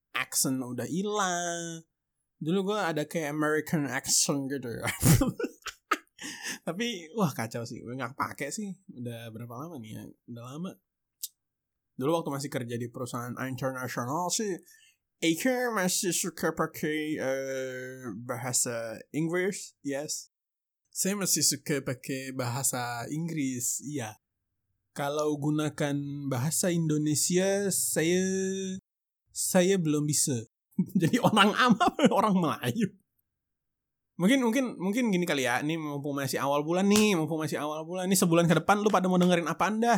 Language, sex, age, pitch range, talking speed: English, male, 20-39, 130-195 Hz, 130 wpm